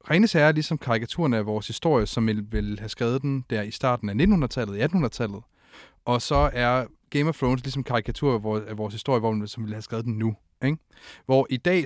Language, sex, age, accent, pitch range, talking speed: Danish, male, 30-49, native, 110-145 Hz, 220 wpm